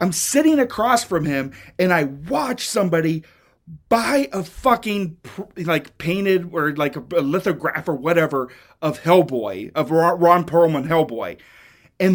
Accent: American